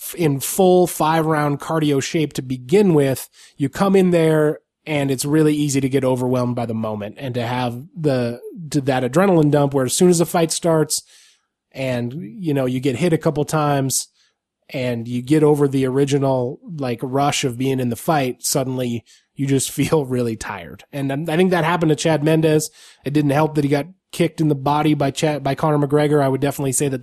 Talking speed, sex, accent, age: 210 wpm, male, American, 20-39